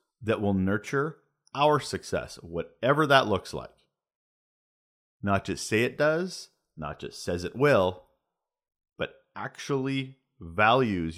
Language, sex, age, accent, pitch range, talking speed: English, male, 40-59, American, 100-150 Hz, 120 wpm